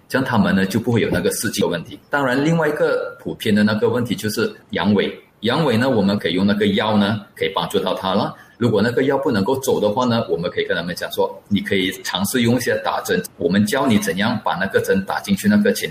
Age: 30-49